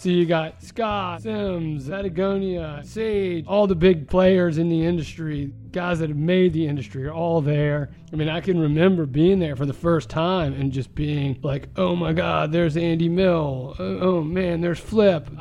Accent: American